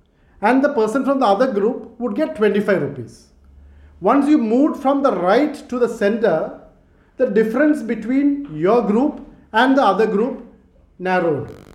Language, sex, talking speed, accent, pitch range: English, male, 155 wpm, Indian, 190-255 Hz